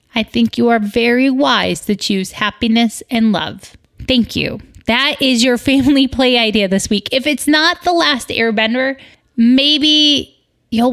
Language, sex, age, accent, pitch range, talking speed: English, female, 30-49, American, 205-270 Hz, 160 wpm